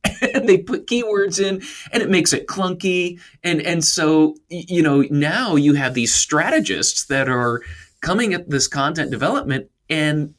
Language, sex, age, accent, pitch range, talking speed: English, male, 20-39, American, 105-155 Hz, 160 wpm